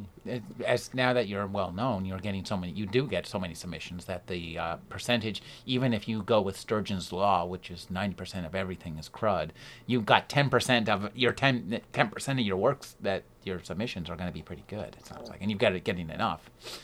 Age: 40-59